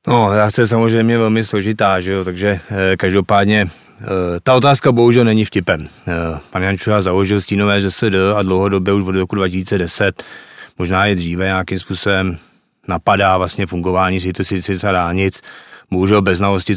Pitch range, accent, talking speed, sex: 95-100 Hz, native, 155 wpm, male